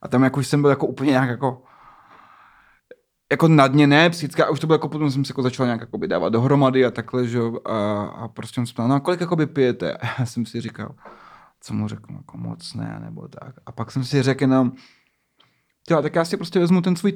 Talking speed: 230 wpm